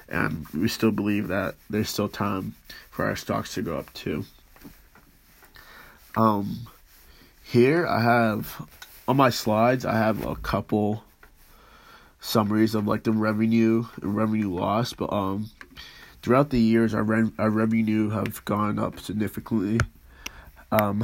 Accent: American